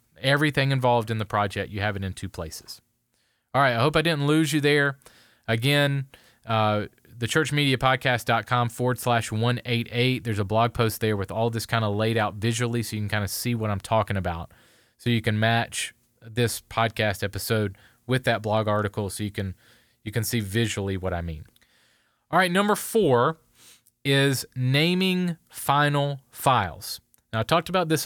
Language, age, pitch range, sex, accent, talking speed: English, 30-49, 115-145 Hz, male, American, 175 wpm